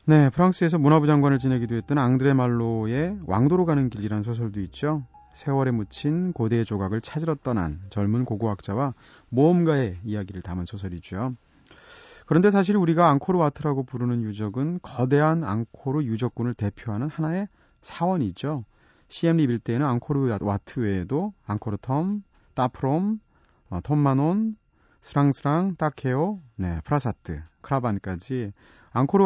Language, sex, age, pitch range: Korean, male, 30-49, 105-155 Hz